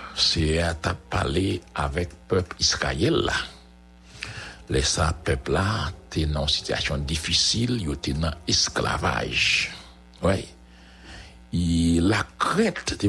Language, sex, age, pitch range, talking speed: English, male, 60-79, 70-95 Hz, 105 wpm